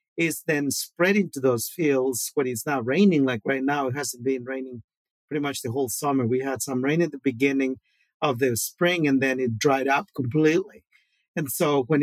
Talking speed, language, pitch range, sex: 205 wpm, English, 130-155 Hz, male